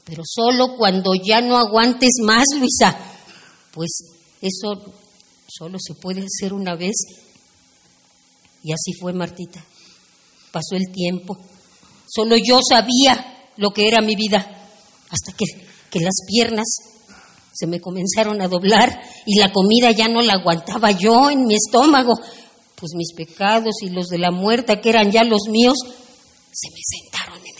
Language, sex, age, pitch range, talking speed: Spanish, female, 40-59, 170-225 Hz, 150 wpm